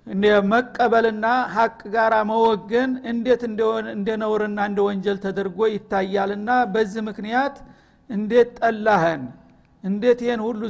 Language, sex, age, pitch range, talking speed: Amharic, male, 60-79, 195-225 Hz, 100 wpm